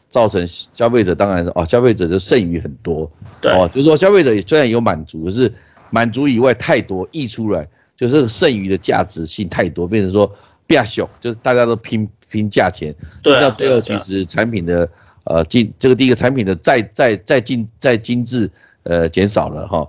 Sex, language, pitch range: male, Chinese, 95-125 Hz